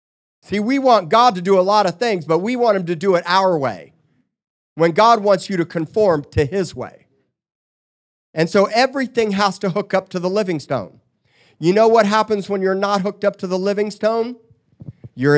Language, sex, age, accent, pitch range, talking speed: English, male, 40-59, American, 160-215 Hz, 205 wpm